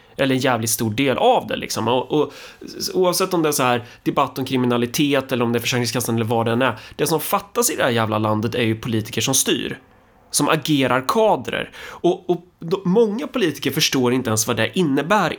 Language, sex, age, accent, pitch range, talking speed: Swedish, male, 20-39, native, 115-160 Hz, 220 wpm